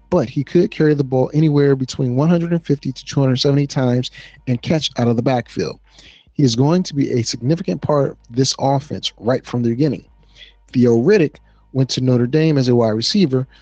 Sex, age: male, 40-59